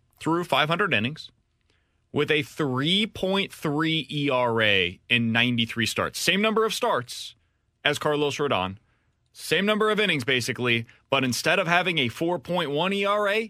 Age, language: 30-49, English